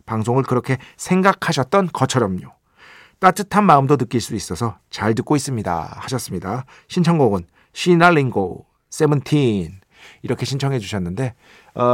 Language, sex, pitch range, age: Korean, male, 105-150 Hz, 50-69